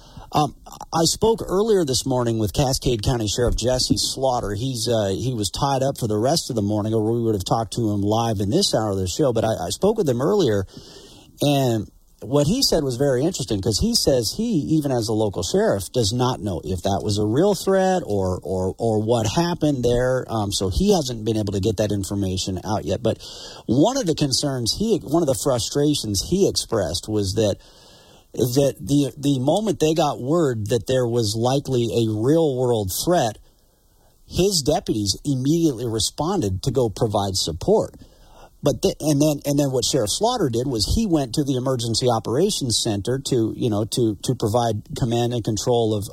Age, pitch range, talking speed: 50-69, 110-145 Hz, 200 wpm